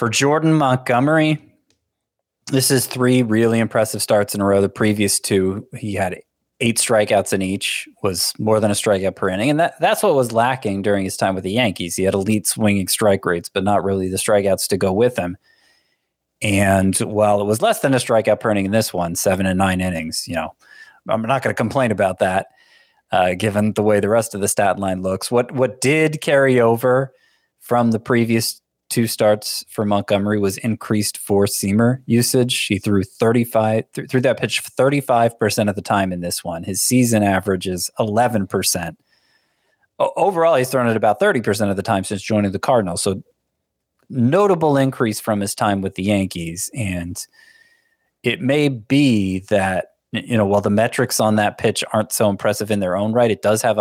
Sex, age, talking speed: male, 20-39, 200 wpm